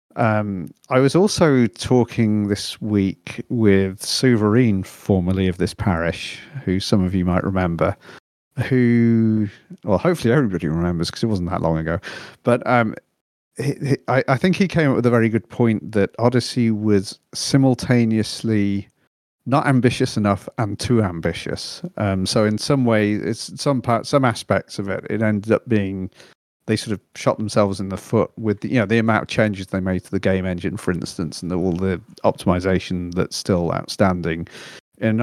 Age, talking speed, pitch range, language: 40-59, 175 wpm, 95-120 Hz, English